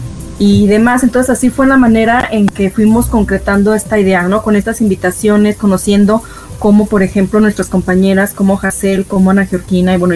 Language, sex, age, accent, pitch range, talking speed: Spanish, female, 30-49, Mexican, 195-225 Hz, 175 wpm